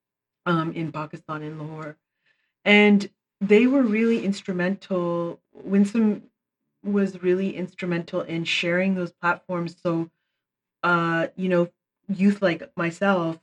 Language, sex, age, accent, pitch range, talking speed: English, female, 30-49, American, 160-195 Hz, 110 wpm